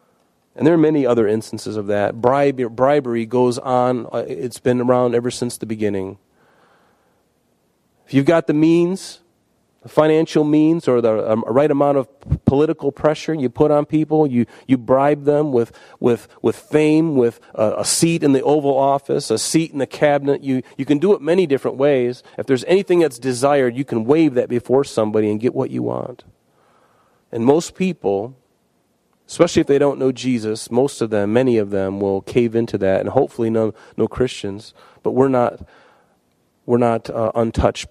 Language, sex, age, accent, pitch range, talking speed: English, male, 40-59, American, 110-140 Hz, 180 wpm